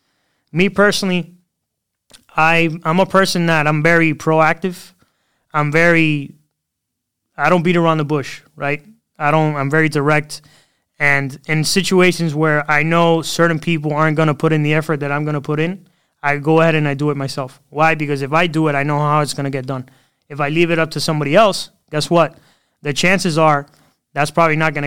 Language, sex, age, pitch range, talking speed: English, male, 20-39, 145-165 Hz, 200 wpm